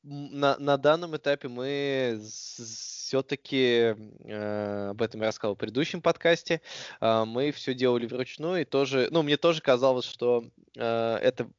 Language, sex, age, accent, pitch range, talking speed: Russian, male, 20-39, native, 105-135 Hz, 145 wpm